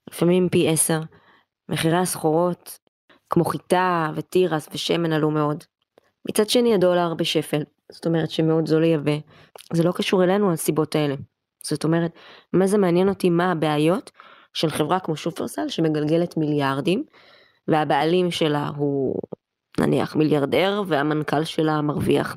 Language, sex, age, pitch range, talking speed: Hebrew, female, 20-39, 160-185 Hz, 130 wpm